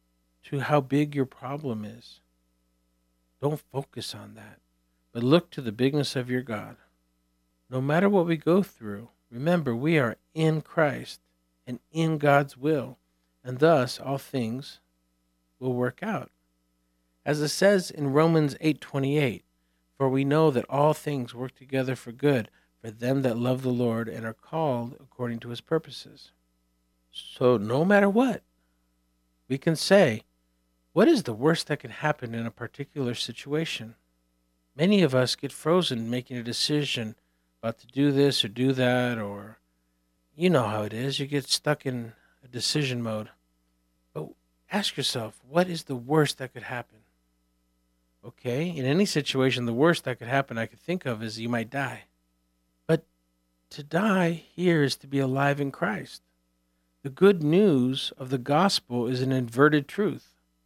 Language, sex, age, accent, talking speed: English, male, 50-69, American, 160 wpm